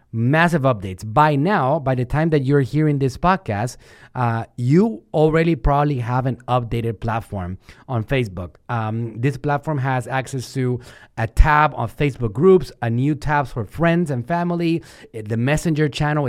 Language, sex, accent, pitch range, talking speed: English, male, Mexican, 120-160 Hz, 160 wpm